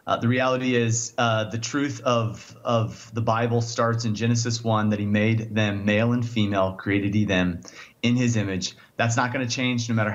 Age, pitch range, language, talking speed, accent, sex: 30-49, 110-125 Hz, English, 205 wpm, American, male